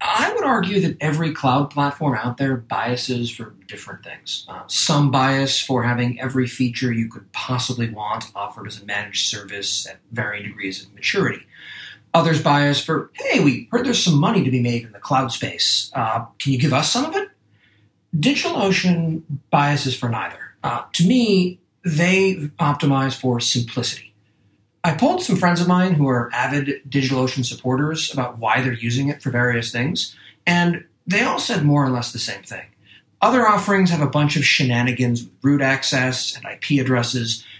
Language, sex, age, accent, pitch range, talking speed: English, male, 40-59, American, 120-160 Hz, 175 wpm